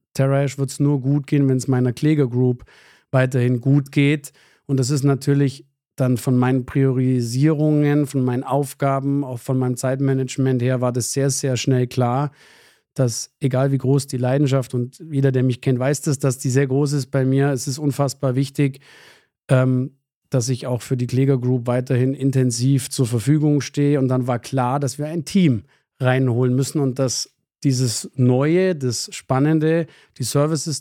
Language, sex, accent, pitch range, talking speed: German, male, German, 130-140 Hz, 175 wpm